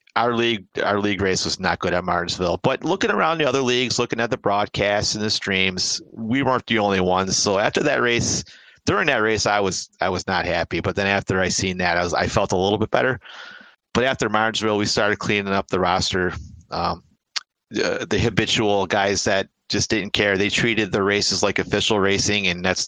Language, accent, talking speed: English, American, 215 wpm